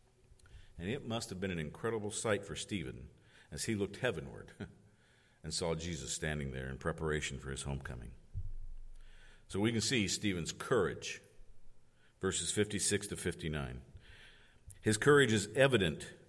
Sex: male